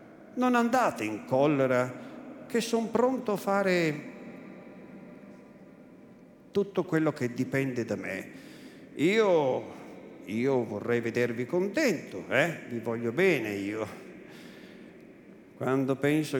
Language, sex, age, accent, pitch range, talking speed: Italian, male, 50-69, native, 135-230 Hz, 100 wpm